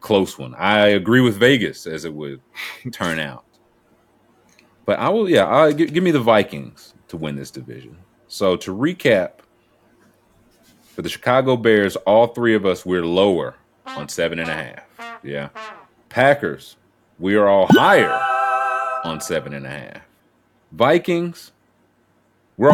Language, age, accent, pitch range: English, 30-49, American, 85-130 Hz